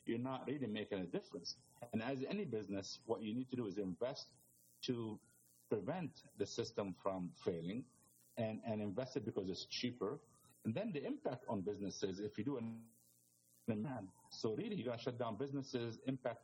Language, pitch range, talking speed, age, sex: English, 100-135 Hz, 185 wpm, 50-69, male